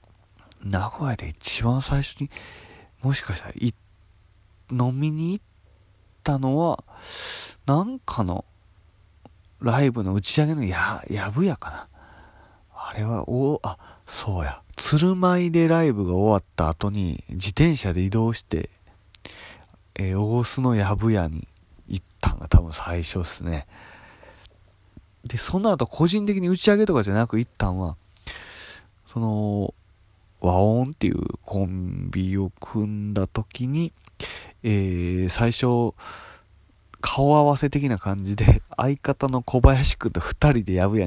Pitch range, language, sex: 90-130 Hz, Japanese, male